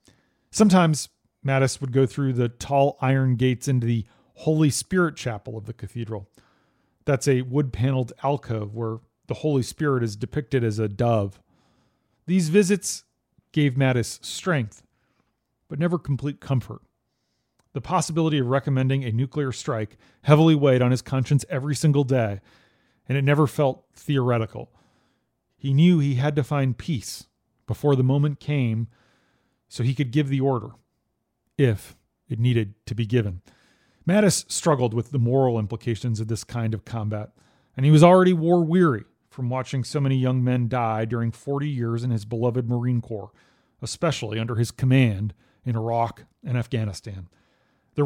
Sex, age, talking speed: male, 40-59, 150 wpm